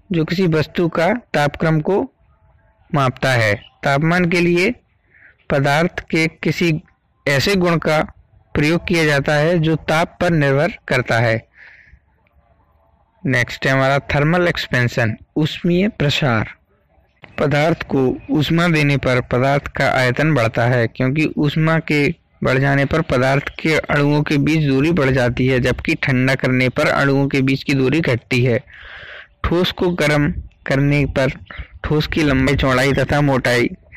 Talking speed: 140 wpm